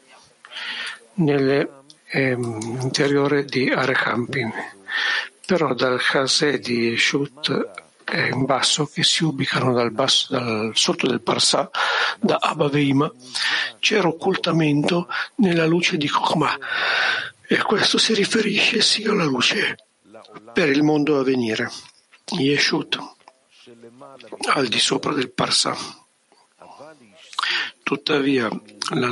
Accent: native